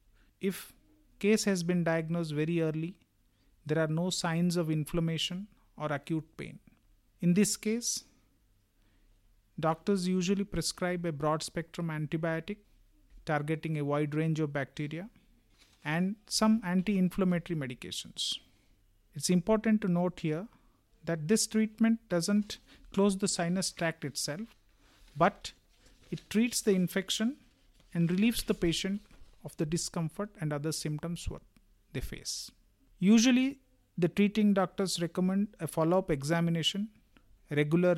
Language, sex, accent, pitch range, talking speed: English, male, Indian, 150-200 Hz, 120 wpm